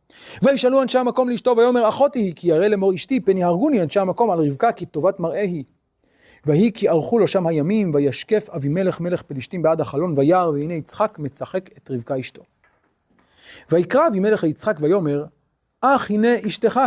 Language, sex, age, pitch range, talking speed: Hebrew, male, 40-59, 150-200 Hz, 165 wpm